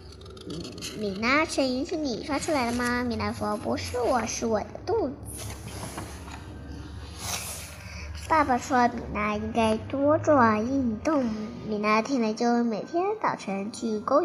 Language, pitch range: Chinese, 215-310 Hz